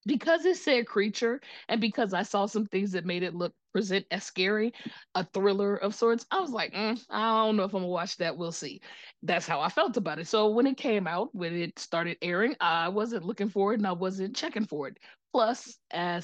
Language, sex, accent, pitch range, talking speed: English, female, American, 160-200 Hz, 235 wpm